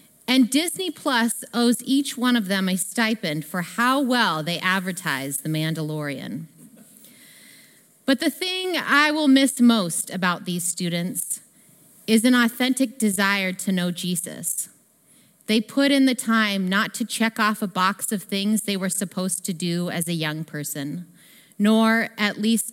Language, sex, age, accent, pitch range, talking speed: English, female, 30-49, American, 175-230 Hz, 155 wpm